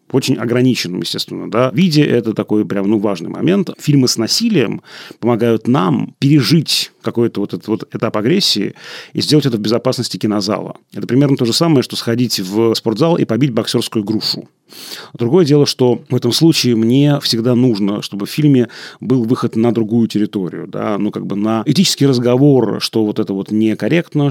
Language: Russian